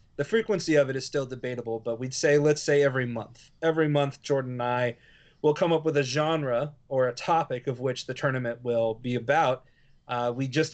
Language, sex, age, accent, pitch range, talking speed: English, male, 30-49, American, 125-150 Hz, 210 wpm